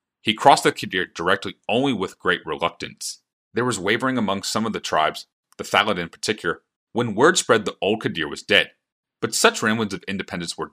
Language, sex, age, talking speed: English, male, 30-49, 195 wpm